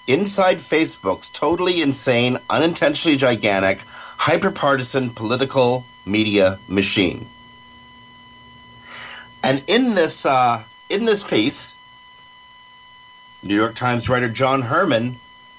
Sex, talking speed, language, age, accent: male, 90 wpm, English, 50-69, American